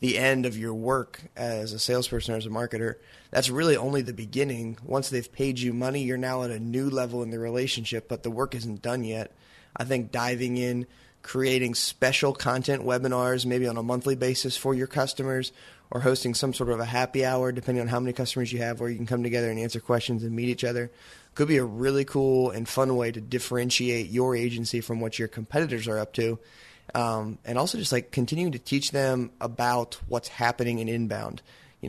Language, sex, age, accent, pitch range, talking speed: English, male, 20-39, American, 115-125 Hz, 215 wpm